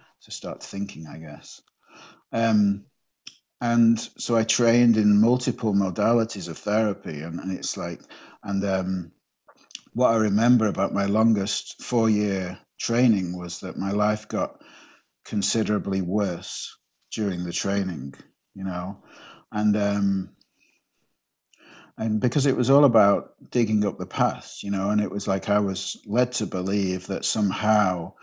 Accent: British